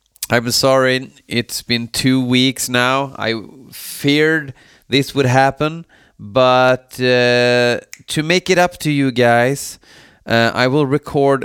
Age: 30-49